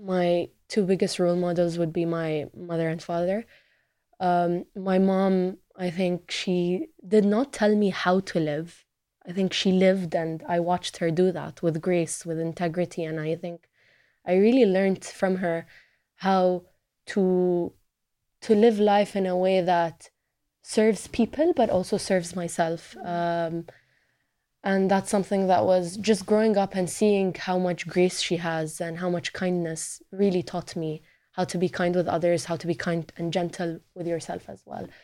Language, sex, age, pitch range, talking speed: English, female, 20-39, 170-195 Hz, 170 wpm